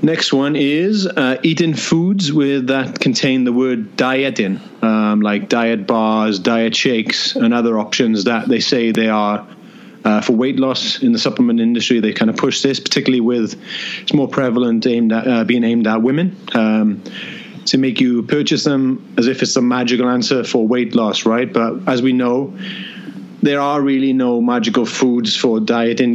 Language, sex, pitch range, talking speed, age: English, male, 115-145 Hz, 180 wpm, 30-49